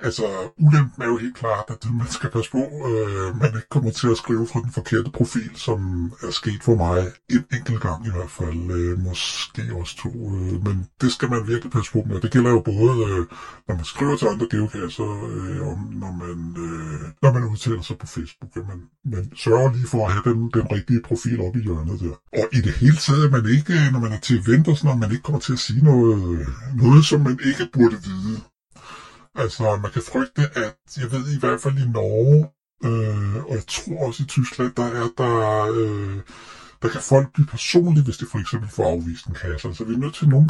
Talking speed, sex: 235 wpm, female